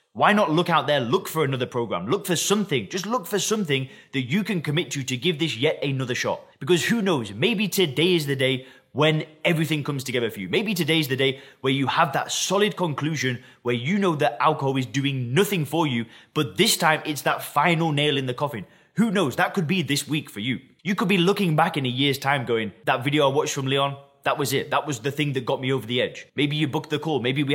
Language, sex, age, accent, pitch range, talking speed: English, male, 20-39, British, 135-180 Hz, 255 wpm